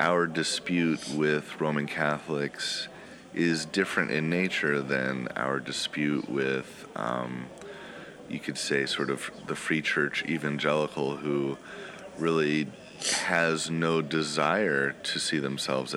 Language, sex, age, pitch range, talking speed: English, male, 30-49, 70-80 Hz, 115 wpm